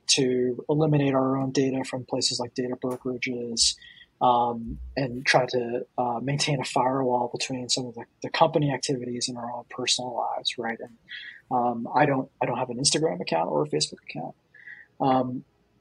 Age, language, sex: 30-49, English, male